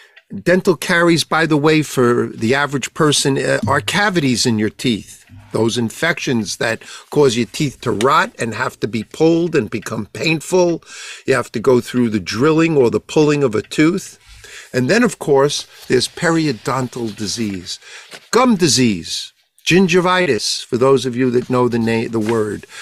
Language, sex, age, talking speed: English, male, 50-69, 165 wpm